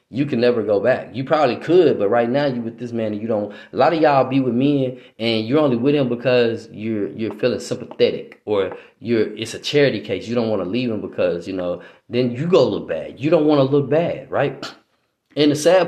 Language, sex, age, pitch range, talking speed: English, male, 20-39, 120-155 Hz, 245 wpm